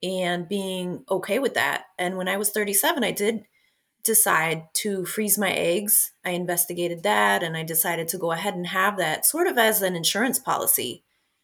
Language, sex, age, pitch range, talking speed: English, female, 30-49, 165-205 Hz, 185 wpm